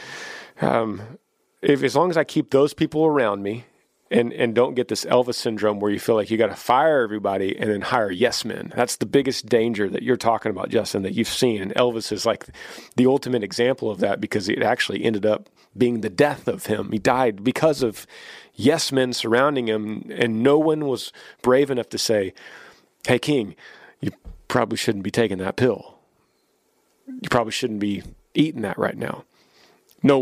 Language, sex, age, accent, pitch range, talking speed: English, male, 40-59, American, 105-145 Hz, 190 wpm